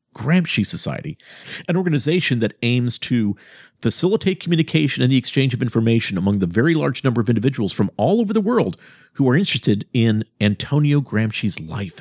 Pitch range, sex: 105-155 Hz, male